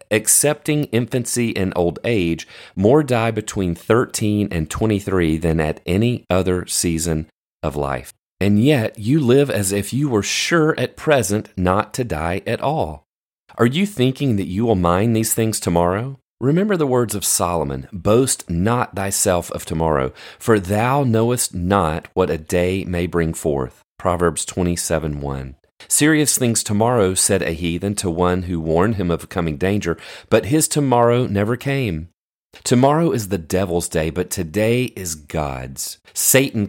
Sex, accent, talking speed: male, American, 160 wpm